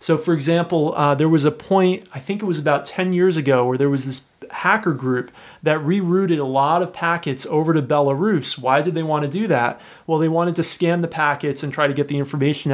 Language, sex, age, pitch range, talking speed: English, male, 30-49, 140-170 Hz, 240 wpm